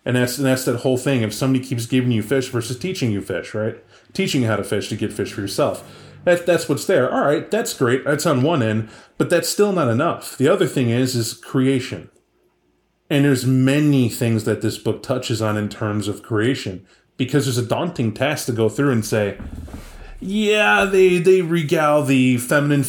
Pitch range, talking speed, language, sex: 110-145 Hz, 210 wpm, English, male